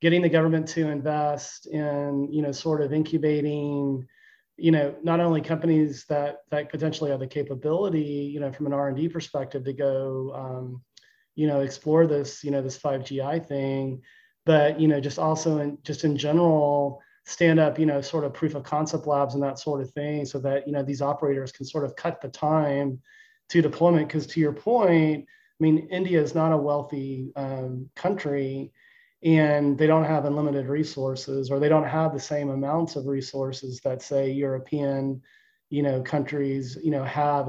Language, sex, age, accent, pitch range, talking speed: English, male, 30-49, American, 140-155 Hz, 190 wpm